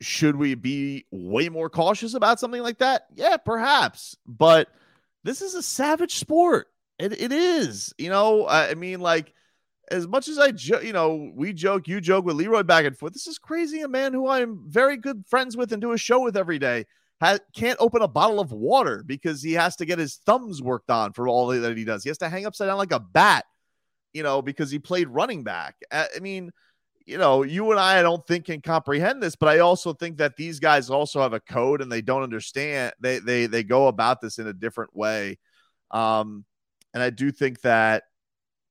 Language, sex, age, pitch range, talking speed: English, male, 30-49, 115-195 Hz, 220 wpm